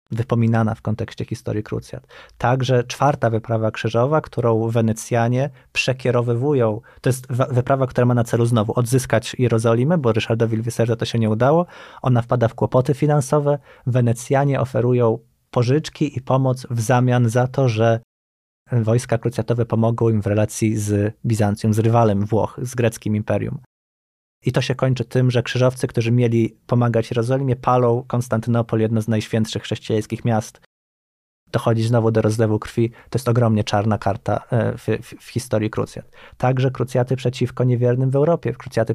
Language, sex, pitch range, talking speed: Polish, male, 115-130 Hz, 155 wpm